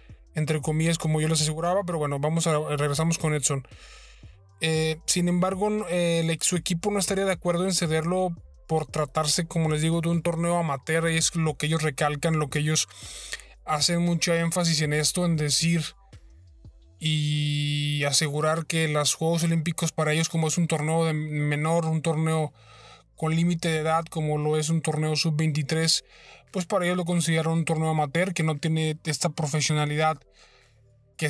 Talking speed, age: 175 wpm, 20-39